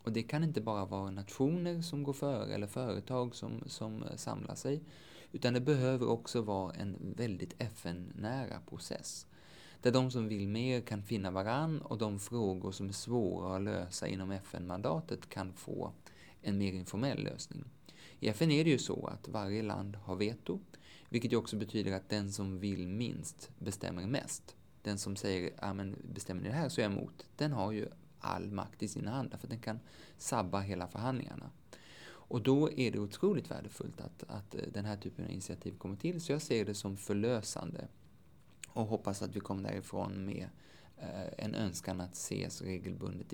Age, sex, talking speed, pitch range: 20-39, male, 180 wpm, 95-125 Hz